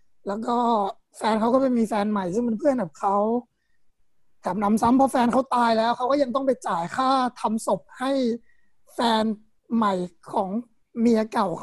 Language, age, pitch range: Thai, 20-39, 205-245 Hz